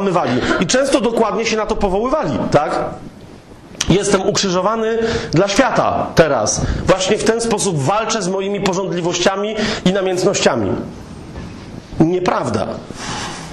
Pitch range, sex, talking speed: 195-235 Hz, male, 105 wpm